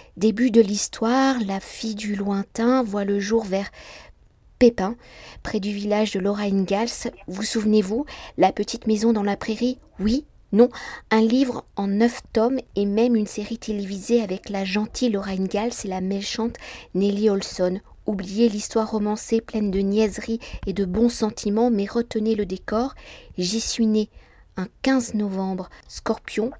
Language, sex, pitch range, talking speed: French, female, 200-235 Hz, 155 wpm